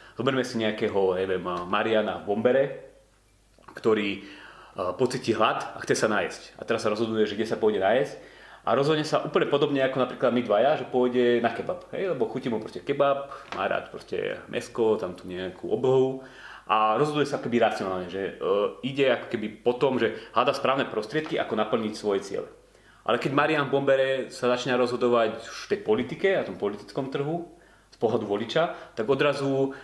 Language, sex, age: Slovak, male, 30-49